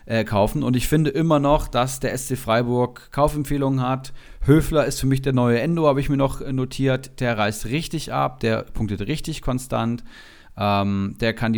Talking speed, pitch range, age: 185 wpm, 110-135 Hz, 40-59